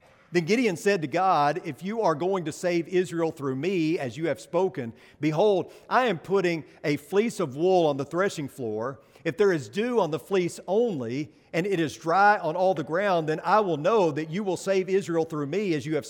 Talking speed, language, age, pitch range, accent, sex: 225 wpm, English, 50-69, 155-205 Hz, American, male